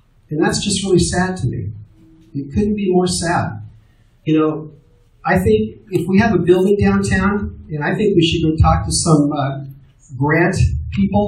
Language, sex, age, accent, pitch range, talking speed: English, male, 40-59, American, 130-165 Hz, 180 wpm